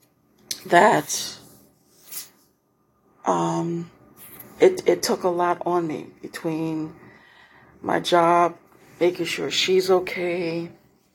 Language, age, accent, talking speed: English, 40-59, American, 85 wpm